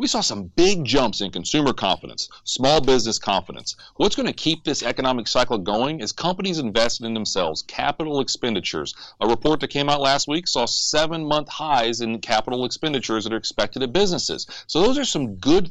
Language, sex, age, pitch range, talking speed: English, male, 40-59, 120-185 Hz, 185 wpm